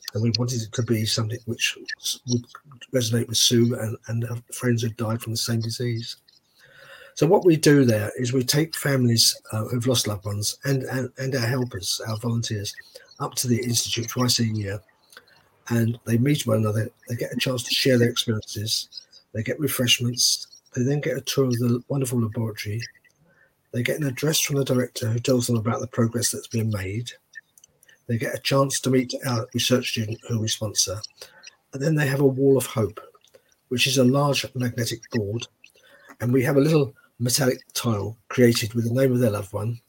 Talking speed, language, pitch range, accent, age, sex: 200 wpm, English, 115-130 Hz, British, 50-69, male